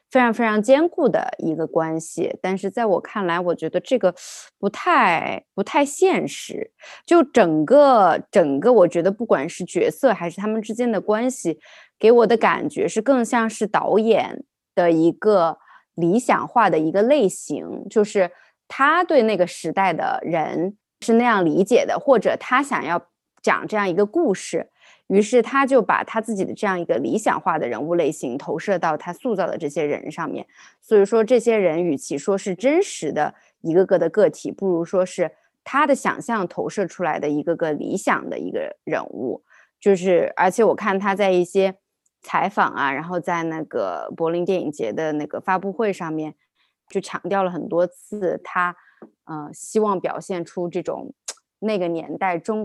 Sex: female